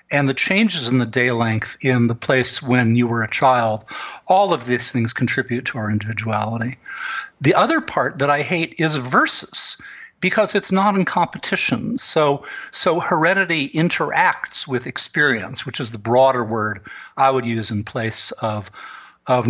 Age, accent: 50-69, American